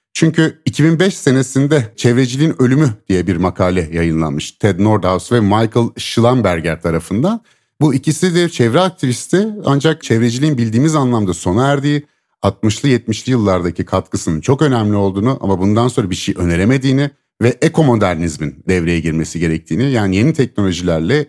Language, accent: Turkish, native